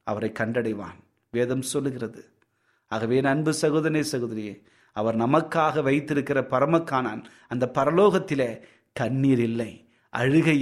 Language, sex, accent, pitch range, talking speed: Tamil, male, native, 120-155 Hz, 95 wpm